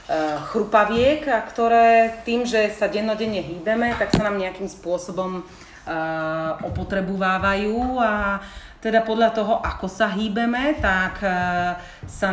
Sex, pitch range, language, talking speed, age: female, 180-230 Hz, Slovak, 110 wpm, 40-59